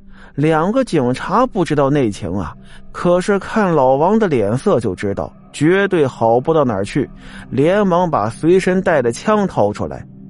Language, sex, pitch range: Chinese, male, 110-175 Hz